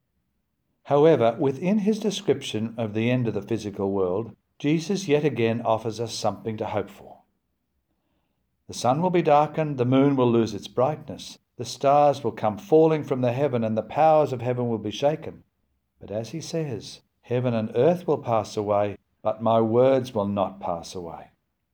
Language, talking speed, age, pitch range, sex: English, 175 wpm, 60-79, 110-140 Hz, male